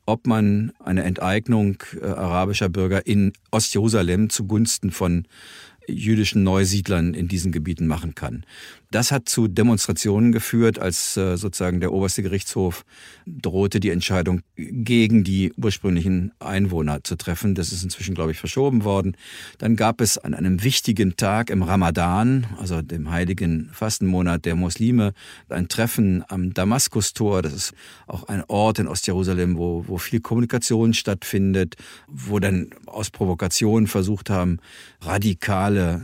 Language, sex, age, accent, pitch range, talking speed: German, male, 50-69, German, 95-110 Hz, 140 wpm